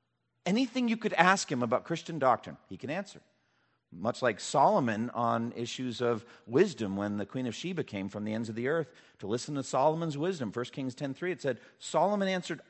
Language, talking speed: English, 200 wpm